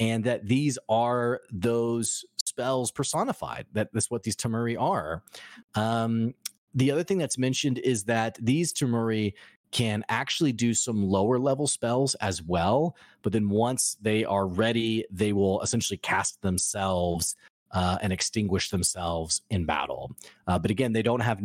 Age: 30-49